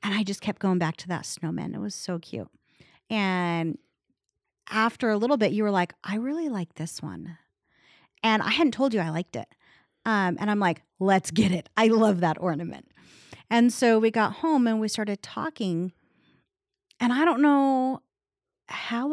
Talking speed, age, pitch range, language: 185 wpm, 40-59, 195-270 Hz, English